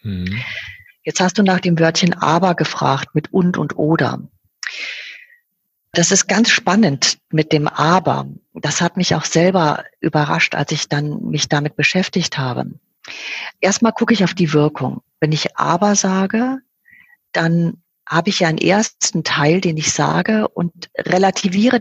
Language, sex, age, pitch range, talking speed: German, female, 40-59, 150-190 Hz, 150 wpm